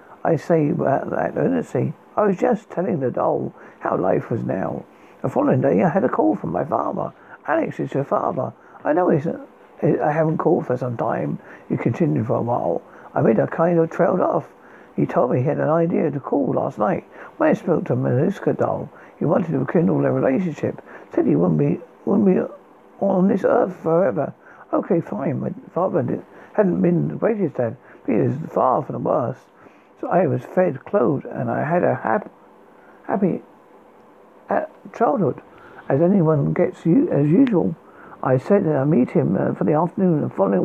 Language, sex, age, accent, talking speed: English, male, 60-79, British, 195 wpm